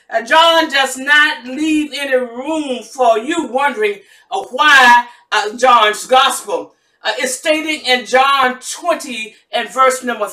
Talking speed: 140 wpm